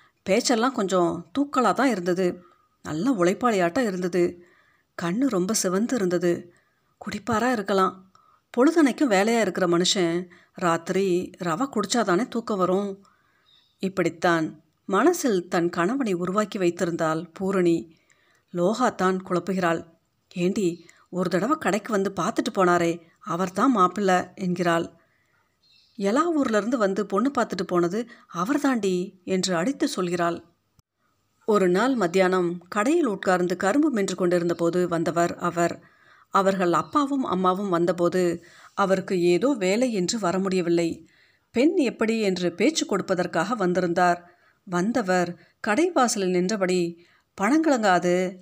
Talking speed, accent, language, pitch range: 105 wpm, native, Tamil, 175-215 Hz